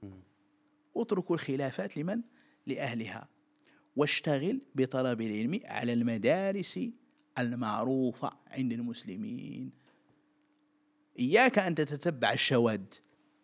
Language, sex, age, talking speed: Arabic, male, 50-69, 70 wpm